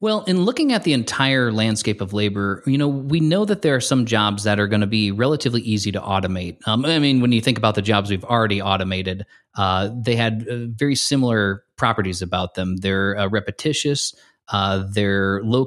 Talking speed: 205 wpm